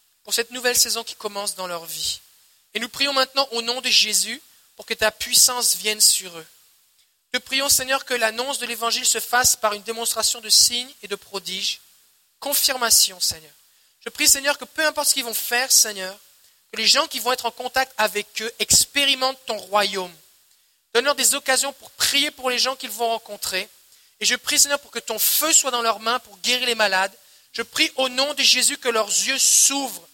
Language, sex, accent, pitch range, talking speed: French, male, French, 210-260 Hz, 205 wpm